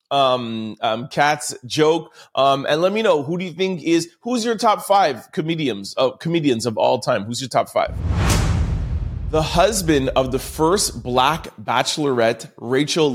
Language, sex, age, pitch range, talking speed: English, male, 30-49, 125-160 Hz, 170 wpm